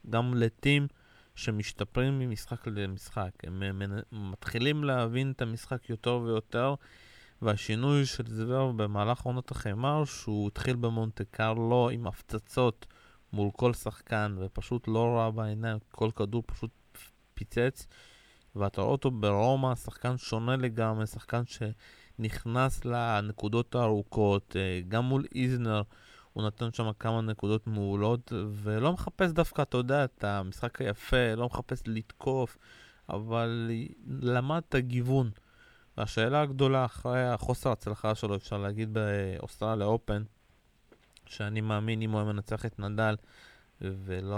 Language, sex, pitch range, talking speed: Hebrew, male, 105-125 Hz, 120 wpm